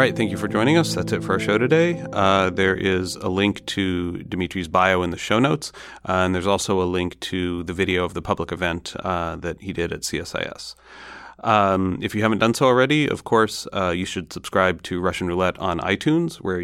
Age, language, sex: 30-49, English, male